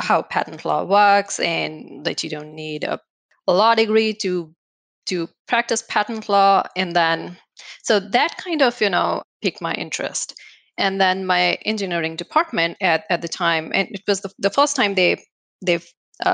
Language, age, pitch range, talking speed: English, 30-49, 155-195 Hz, 175 wpm